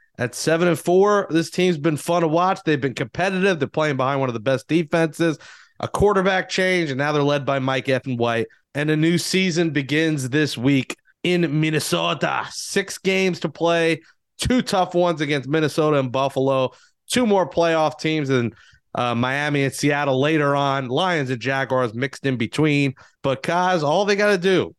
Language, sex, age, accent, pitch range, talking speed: English, male, 30-49, American, 130-175 Hz, 185 wpm